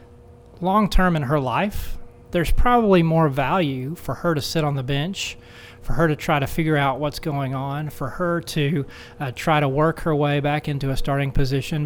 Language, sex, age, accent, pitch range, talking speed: English, male, 30-49, American, 125-160 Hz, 200 wpm